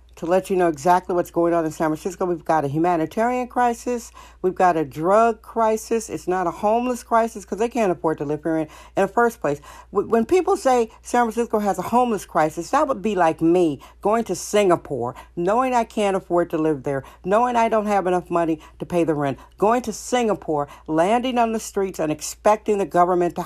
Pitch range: 160-210 Hz